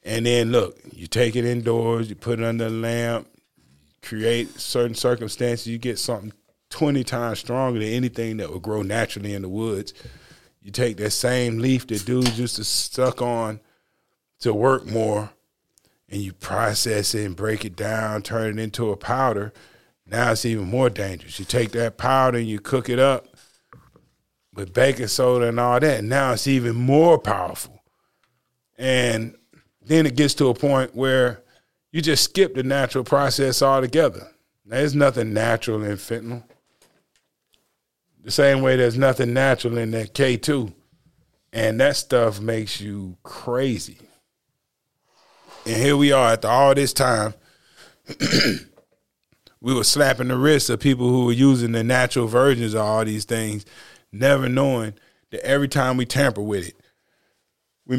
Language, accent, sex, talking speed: English, American, male, 160 wpm